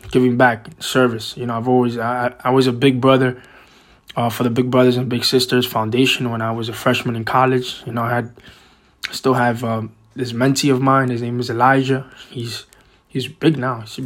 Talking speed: 215 wpm